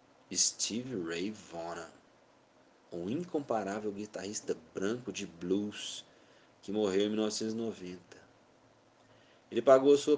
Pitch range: 105-135 Hz